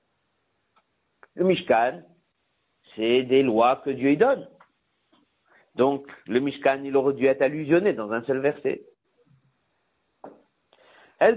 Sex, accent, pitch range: male, French, 130-155 Hz